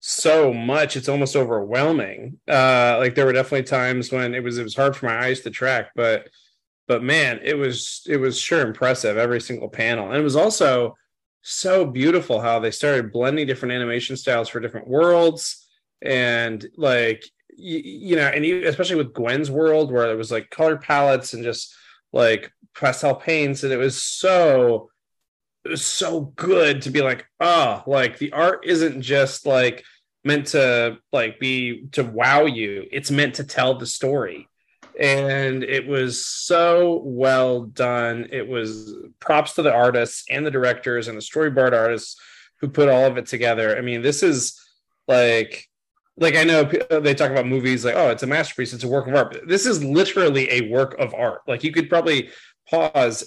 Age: 20-39